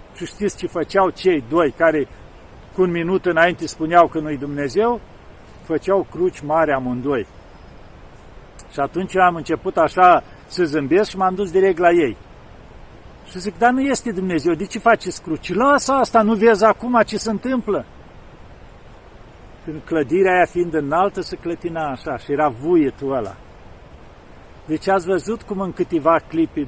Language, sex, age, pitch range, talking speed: Romanian, male, 50-69, 160-210 Hz, 155 wpm